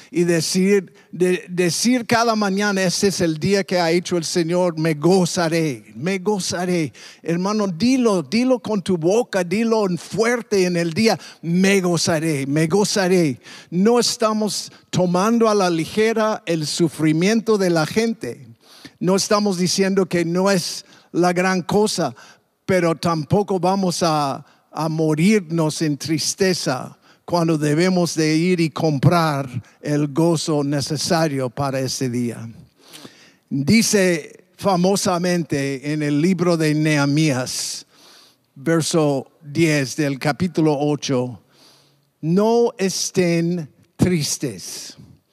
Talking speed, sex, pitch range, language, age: 120 wpm, male, 155-195 Hz, English, 50-69